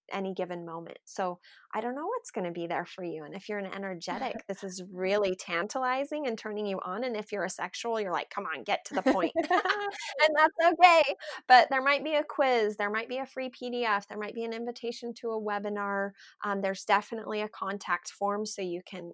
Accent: American